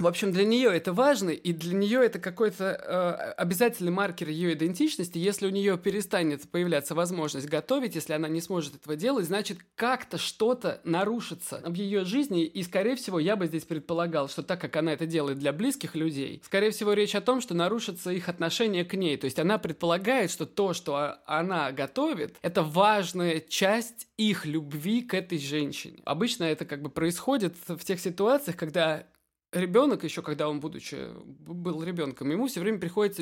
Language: Russian